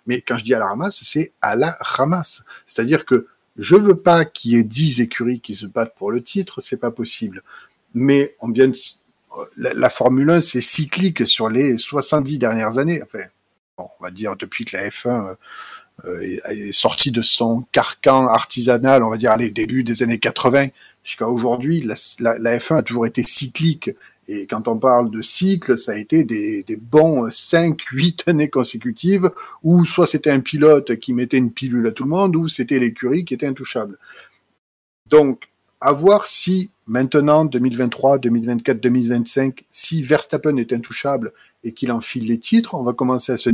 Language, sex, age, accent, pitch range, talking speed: French, male, 40-59, French, 120-160 Hz, 195 wpm